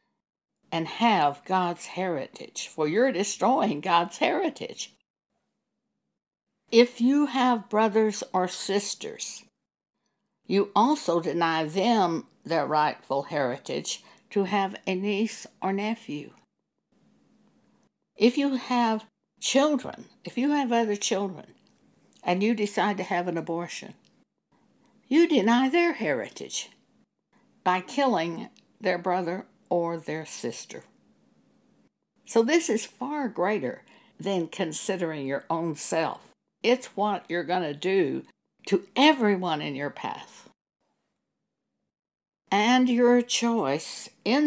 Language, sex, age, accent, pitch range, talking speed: English, female, 60-79, American, 170-235 Hz, 110 wpm